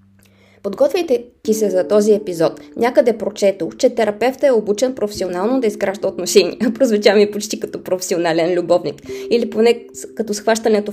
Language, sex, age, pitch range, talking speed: Bulgarian, female, 20-39, 180-210 Hz, 135 wpm